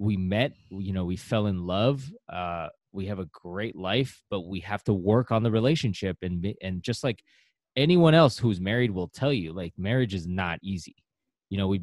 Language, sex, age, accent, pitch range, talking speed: English, male, 20-39, American, 95-130 Hz, 210 wpm